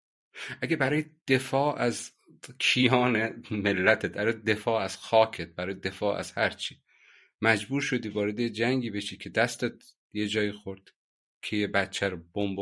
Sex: male